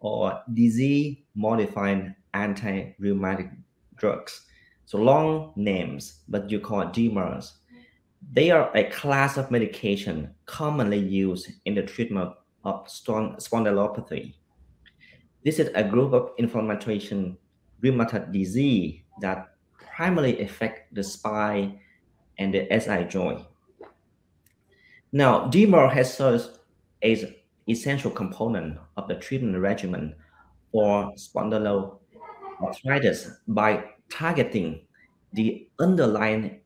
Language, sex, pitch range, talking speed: English, male, 100-125 Hz, 100 wpm